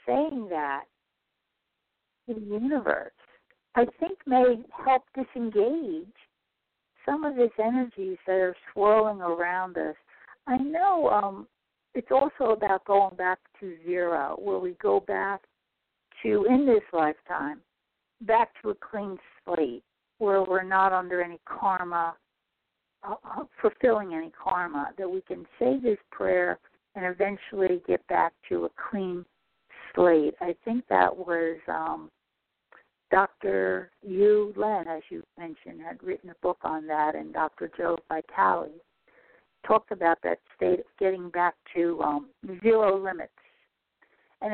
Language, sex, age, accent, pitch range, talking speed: English, female, 50-69, American, 175-235 Hz, 130 wpm